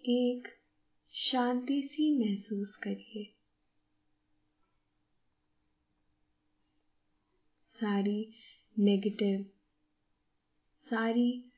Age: 20-39